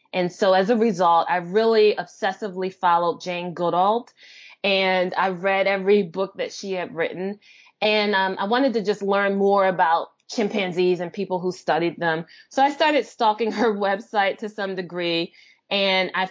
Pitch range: 175-210 Hz